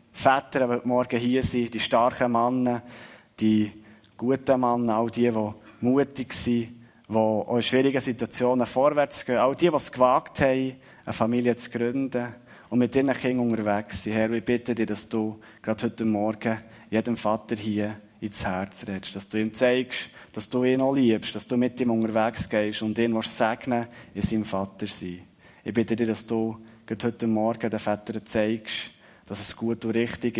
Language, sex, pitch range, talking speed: German, male, 105-125 Hz, 185 wpm